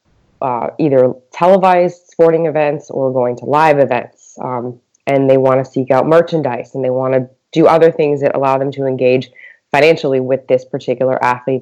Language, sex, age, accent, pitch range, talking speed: English, female, 20-39, American, 130-155 Hz, 180 wpm